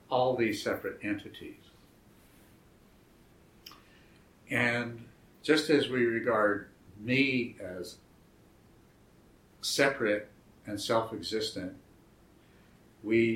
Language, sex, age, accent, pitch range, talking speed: English, male, 60-79, American, 100-120 Hz, 65 wpm